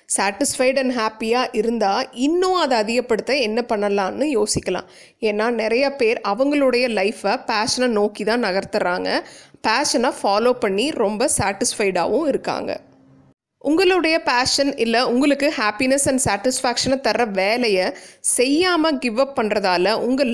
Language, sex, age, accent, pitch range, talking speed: Tamil, female, 20-39, native, 215-275 Hz, 110 wpm